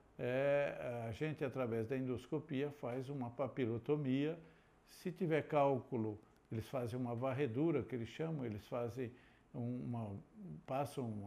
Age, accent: 60-79, Brazilian